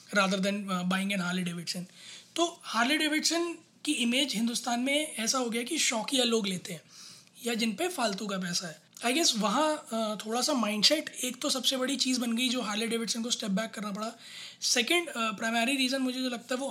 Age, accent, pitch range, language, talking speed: 20-39, native, 200-245 Hz, Hindi, 210 wpm